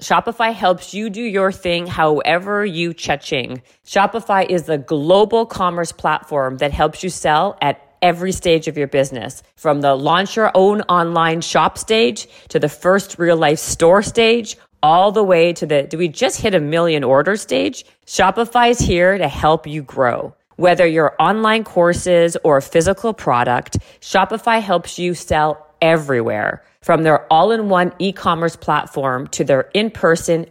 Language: English